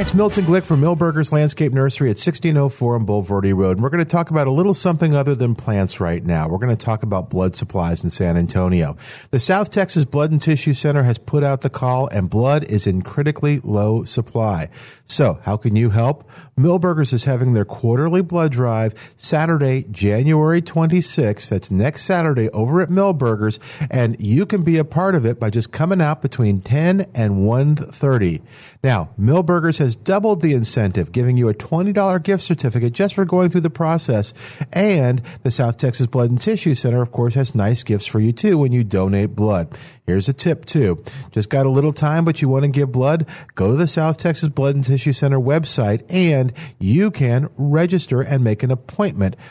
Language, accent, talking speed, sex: English, American, 200 wpm, male